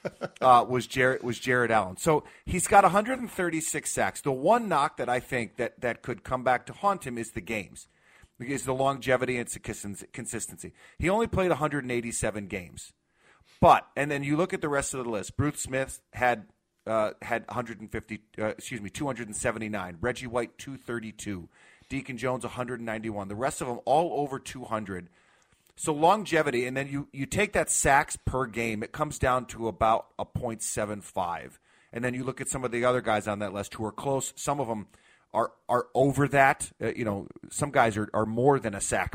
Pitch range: 110-135 Hz